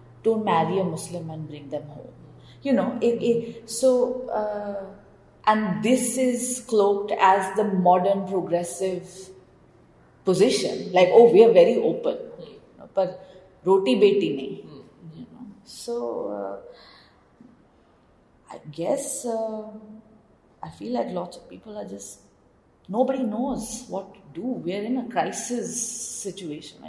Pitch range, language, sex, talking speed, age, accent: 190-235 Hz, English, female, 125 wpm, 30-49, Indian